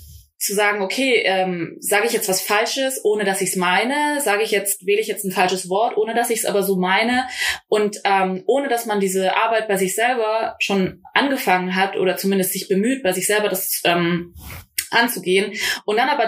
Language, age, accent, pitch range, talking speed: German, 20-39, German, 185-220 Hz, 205 wpm